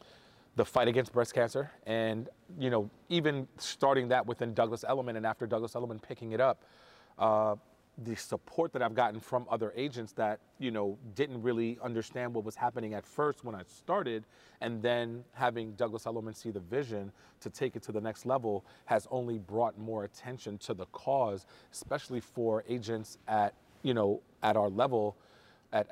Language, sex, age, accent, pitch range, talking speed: English, male, 40-59, American, 105-125 Hz, 180 wpm